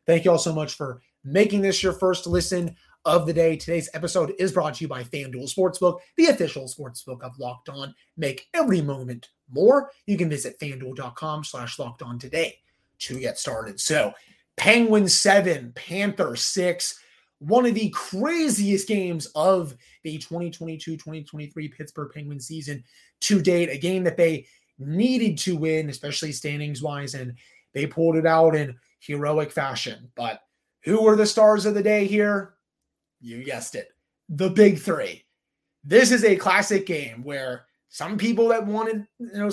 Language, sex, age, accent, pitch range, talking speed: English, male, 30-49, American, 145-200 Hz, 160 wpm